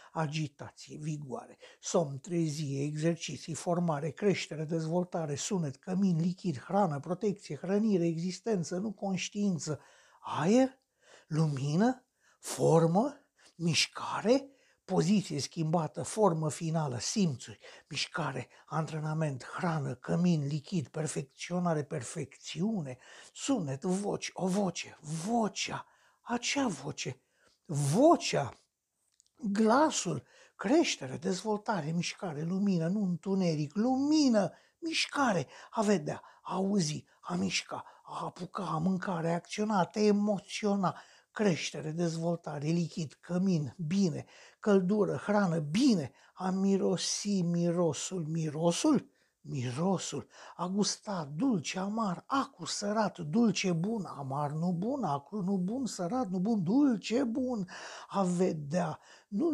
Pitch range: 160-210 Hz